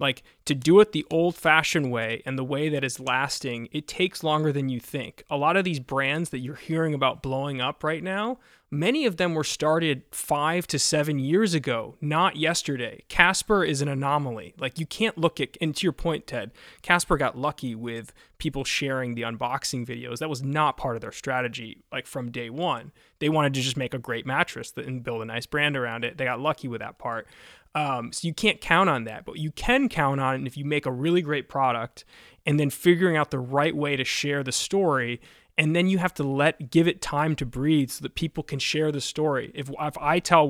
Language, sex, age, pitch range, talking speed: English, male, 20-39, 130-160 Hz, 225 wpm